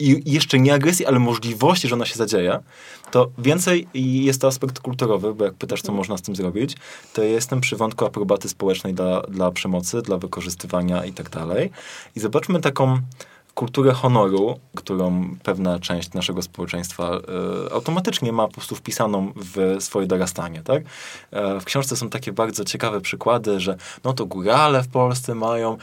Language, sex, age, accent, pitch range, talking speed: Polish, male, 20-39, native, 110-135 Hz, 165 wpm